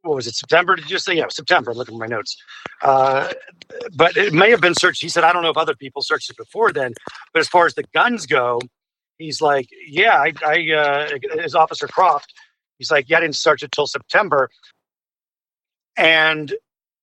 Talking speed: 210 wpm